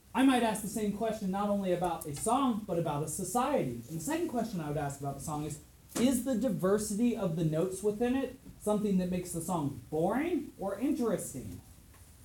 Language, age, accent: English, 30-49, American